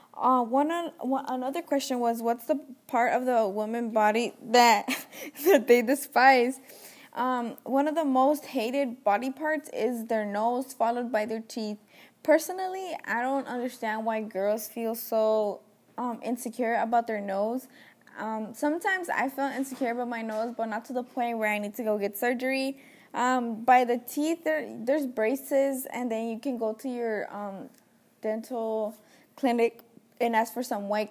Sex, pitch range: female, 220-260 Hz